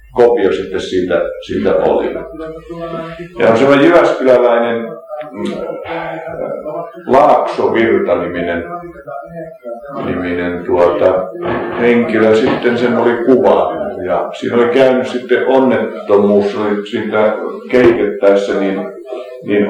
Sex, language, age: male, Finnish, 50-69